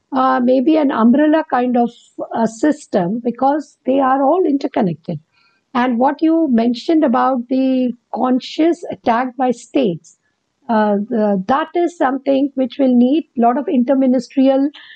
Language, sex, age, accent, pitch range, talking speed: English, female, 50-69, Indian, 225-280 Hz, 145 wpm